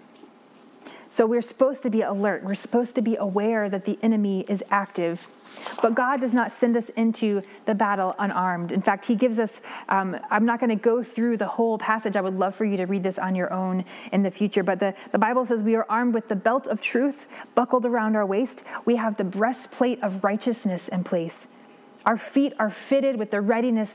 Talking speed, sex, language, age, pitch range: 220 wpm, female, English, 20-39, 200-235 Hz